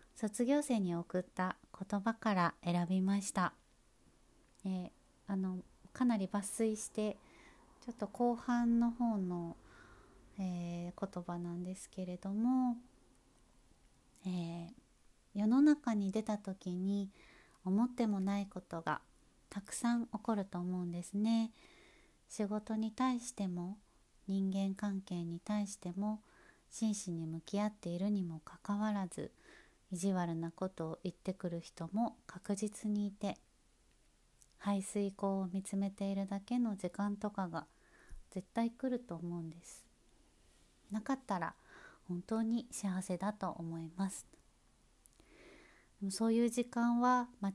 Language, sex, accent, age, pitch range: Japanese, female, native, 40-59, 185-215 Hz